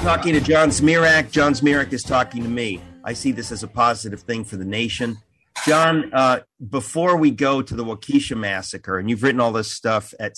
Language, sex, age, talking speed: English, male, 40-59, 210 wpm